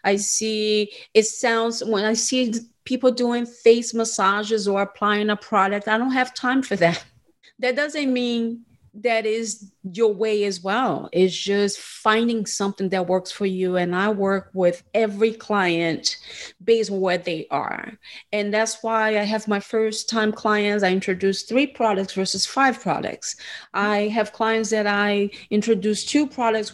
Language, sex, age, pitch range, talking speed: English, female, 30-49, 185-225 Hz, 165 wpm